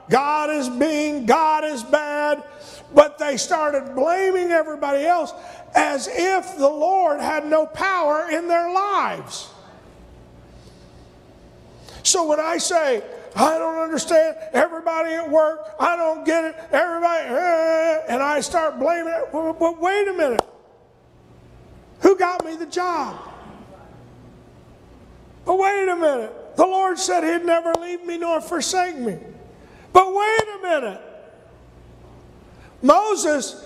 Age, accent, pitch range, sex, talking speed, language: 50-69, American, 245-345 Hz, male, 125 wpm, English